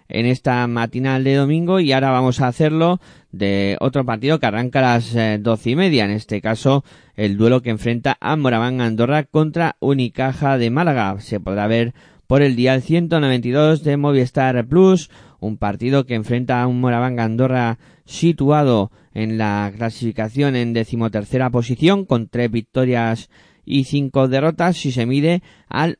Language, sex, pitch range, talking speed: Spanish, male, 115-140 Hz, 160 wpm